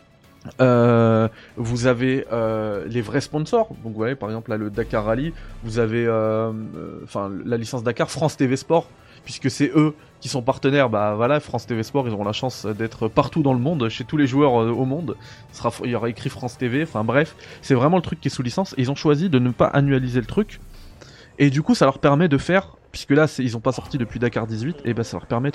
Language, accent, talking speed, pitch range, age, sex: French, French, 245 wpm, 115-150 Hz, 20-39, male